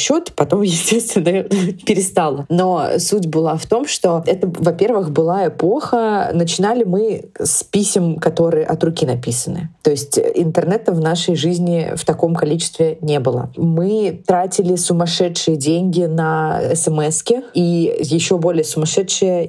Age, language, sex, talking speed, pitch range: 20-39, Russian, female, 130 wpm, 155-185 Hz